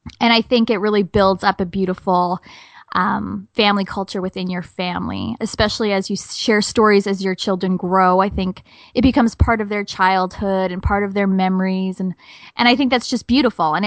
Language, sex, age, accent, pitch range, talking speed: English, female, 10-29, American, 190-230 Hz, 195 wpm